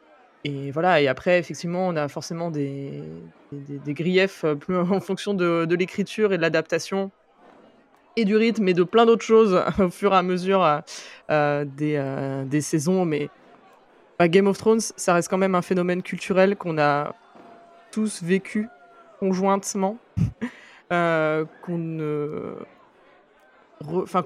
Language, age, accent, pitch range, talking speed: French, 20-39, French, 160-205 Hz, 130 wpm